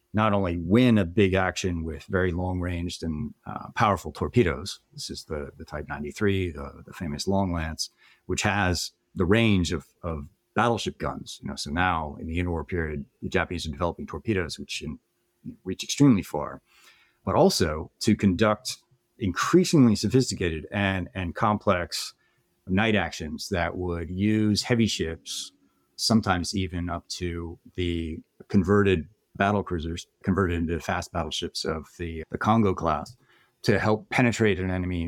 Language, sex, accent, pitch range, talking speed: English, male, American, 85-105 Hz, 150 wpm